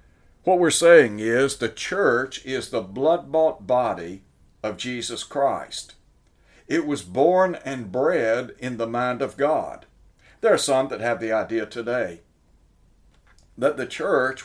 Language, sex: English, male